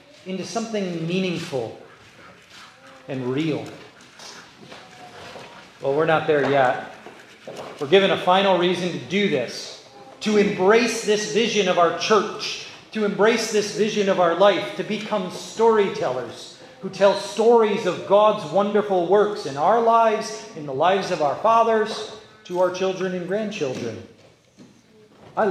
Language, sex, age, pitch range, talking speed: English, male, 40-59, 165-210 Hz, 135 wpm